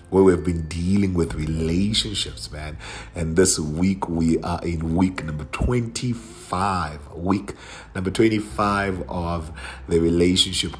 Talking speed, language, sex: 120 wpm, English, male